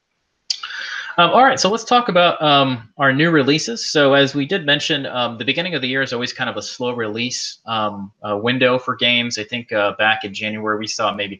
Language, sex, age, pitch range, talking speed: English, male, 20-39, 110-135 Hz, 225 wpm